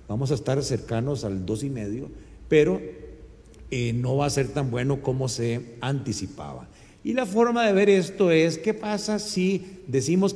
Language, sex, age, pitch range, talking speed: Spanish, male, 50-69, 115-175 Hz, 175 wpm